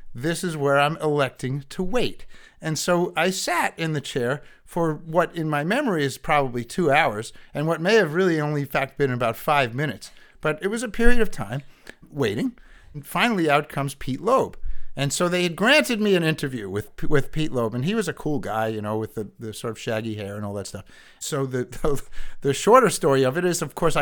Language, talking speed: English, 225 wpm